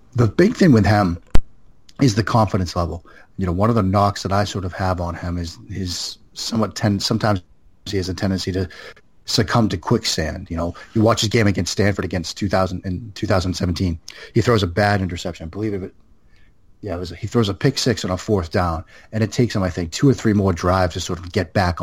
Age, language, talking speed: 30-49, English, 230 wpm